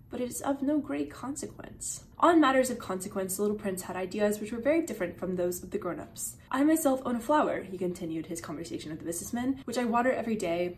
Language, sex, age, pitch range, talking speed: English, female, 20-39, 180-225 Hz, 235 wpm